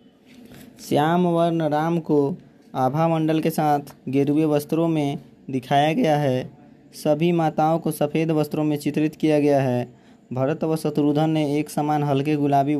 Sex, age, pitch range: male, 20-39, 140-165 Hz